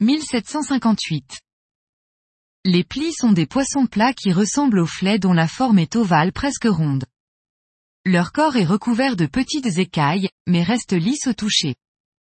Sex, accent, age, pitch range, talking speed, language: female, French, 20-39, 175-240 Hz, 145 wpm, French